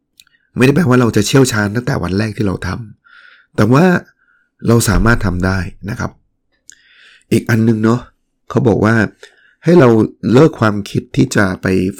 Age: 20-39